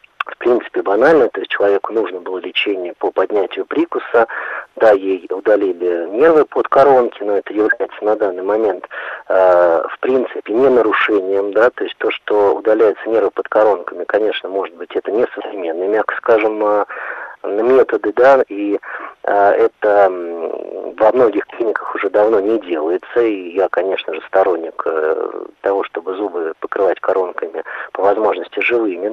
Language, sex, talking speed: Russian, male, 150 wpm